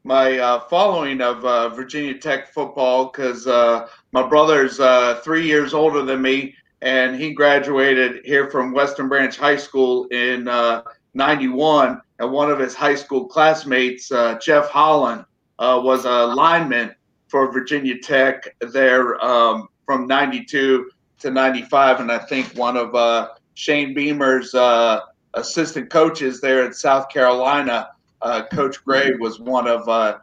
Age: 50-69